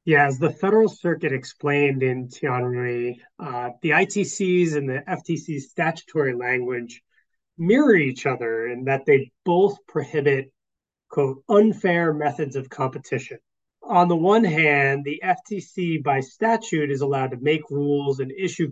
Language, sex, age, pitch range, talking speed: English, male, 30-49, 135-175 Hz, 140 wpm